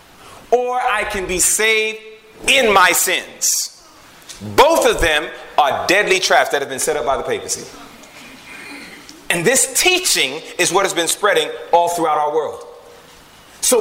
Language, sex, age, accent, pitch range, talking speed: English, male, 30-49, American, 185-300 Hz, 150 wpm